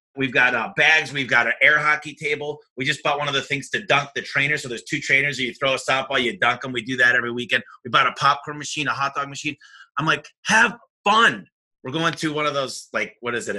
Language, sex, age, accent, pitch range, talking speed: English, male, 30-49, American, 135-175 Hz, 265 wpm